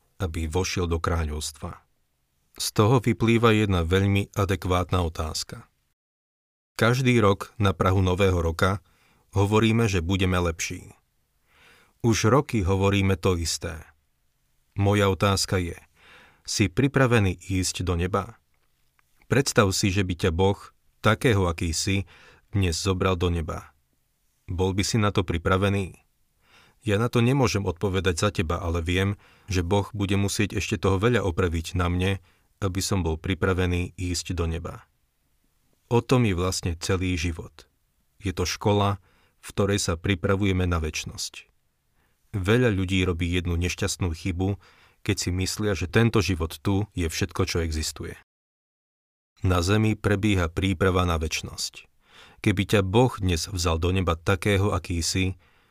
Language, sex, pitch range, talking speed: Slovak, male, 85-100 Hz, 135 wpm